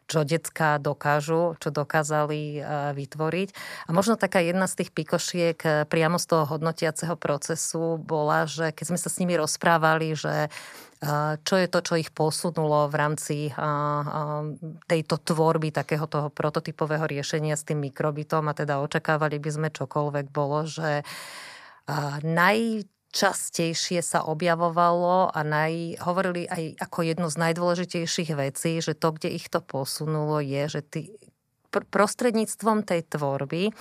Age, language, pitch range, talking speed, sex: 30-49, Slovak, 150-170 Hz, 135 wpm, female